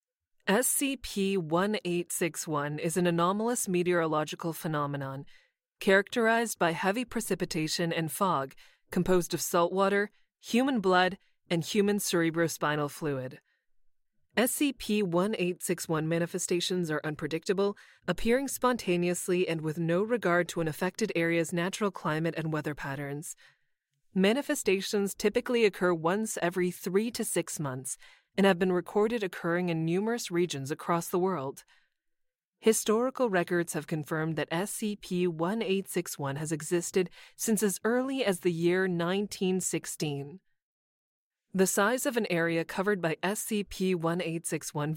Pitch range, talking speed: 165-205 Hz, 115 wpm